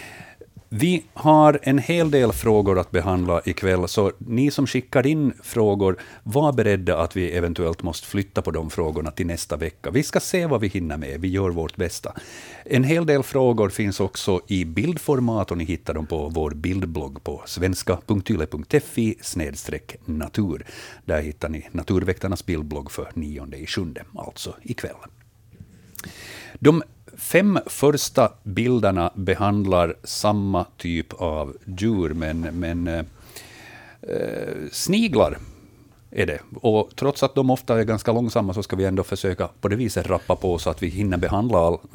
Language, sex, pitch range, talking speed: Swedish, male, 90-125 Hz, 155 wpm